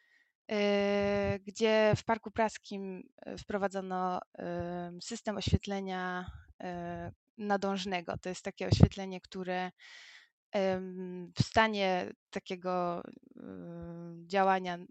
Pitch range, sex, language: 185-225 Hz, female, Polish